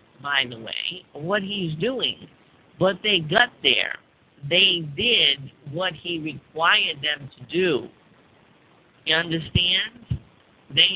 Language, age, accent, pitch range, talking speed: English, 50-69, American, 140-185 Hz, 115 wpm